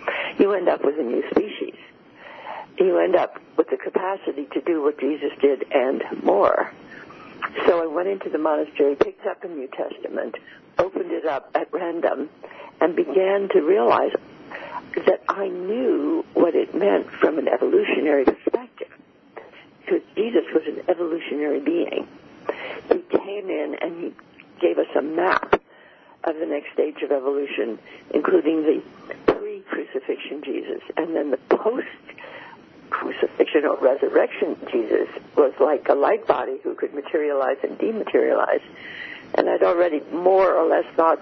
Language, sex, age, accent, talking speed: English, female, 60-79, American, 145 wpm